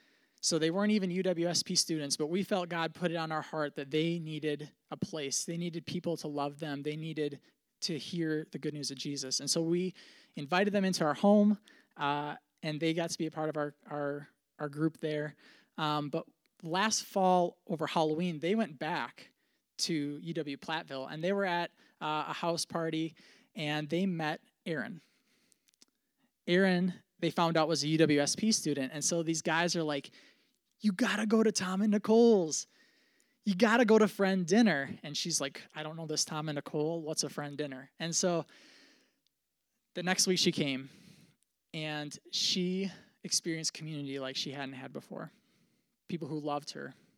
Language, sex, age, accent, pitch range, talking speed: English, male, 20-39, American, 150-185 Hz, 180 wpm